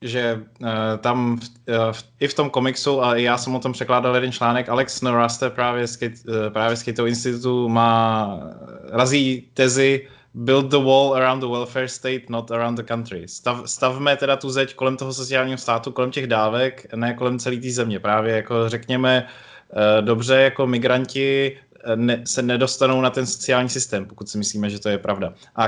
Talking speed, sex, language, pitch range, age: 185 wpm, male, Slovak, 120-135 Hz, 20-39